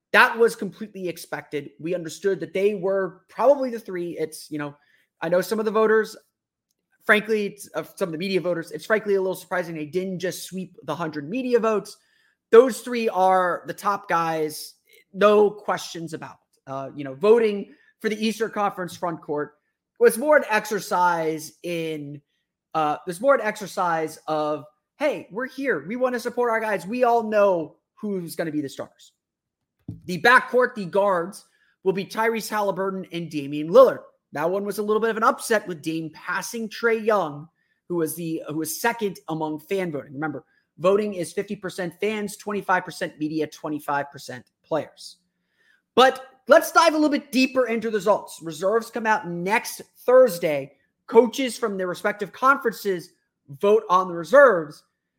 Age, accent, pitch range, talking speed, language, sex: 30-49, American, 165-225 Hz, 170 wpm, English, male